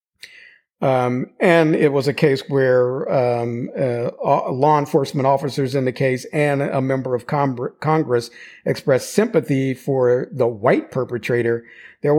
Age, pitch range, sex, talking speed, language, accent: 50-69, 130-160 Hz, male, 140 wpm, English, American